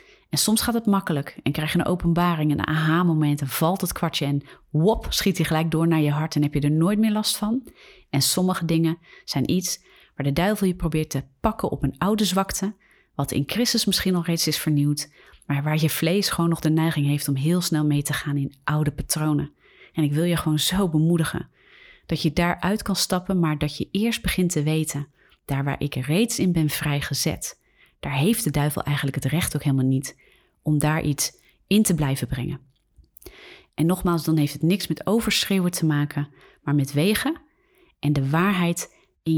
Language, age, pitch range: Dutch, 30-49, 145-180 Hz